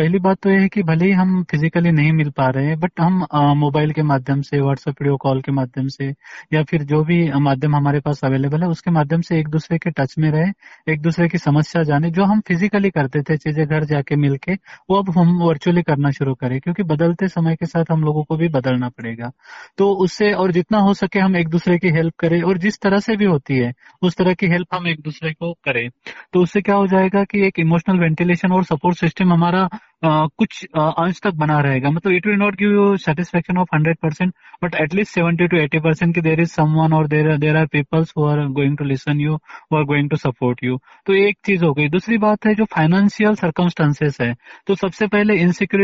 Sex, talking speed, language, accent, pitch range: male, 190 wpm, Hindi, native, 150-180 Hz